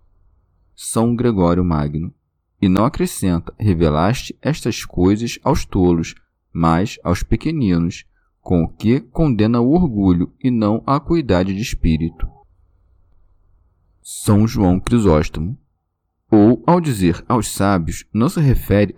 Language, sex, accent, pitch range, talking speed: Portuguese, male, Brazilian, 85-120 Hz, 115 wpm